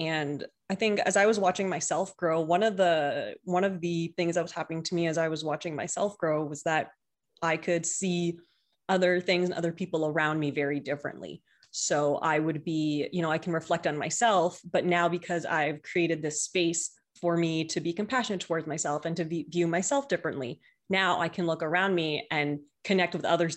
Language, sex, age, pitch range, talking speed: English, female, 20-39, 155-180 Hz, 210 wpm